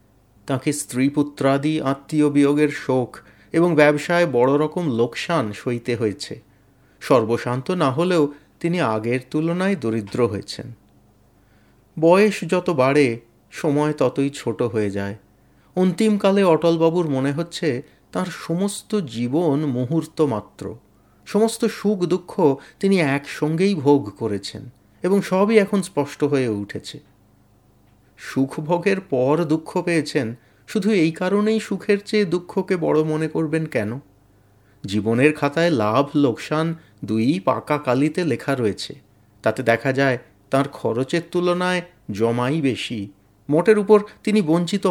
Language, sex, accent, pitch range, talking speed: Bengali, male, native, 120-175 Hz, 105 wpm